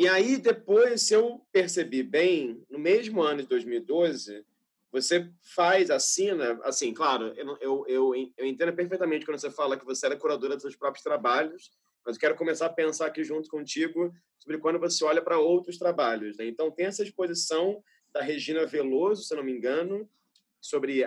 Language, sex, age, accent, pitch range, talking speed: Portuguese, male, 30-49, Brazilian, 155-210 Hz, 180 wpm